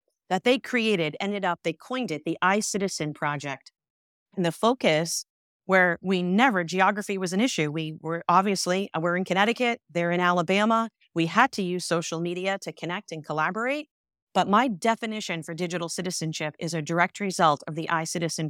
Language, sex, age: English, female, 40-59